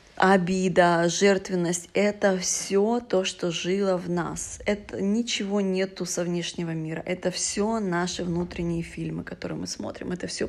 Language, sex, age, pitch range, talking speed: Russian, female, 20-39, 175-200 Hz, 145 wpm